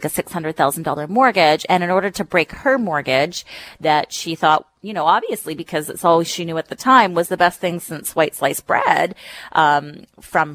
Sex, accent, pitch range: female, American, 155-205 Hz